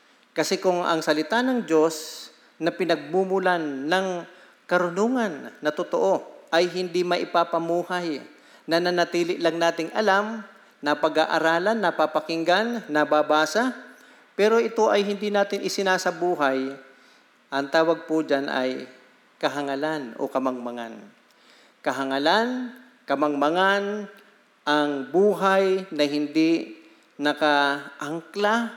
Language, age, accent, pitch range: Filipino, 50-69, native, 150-200 Hz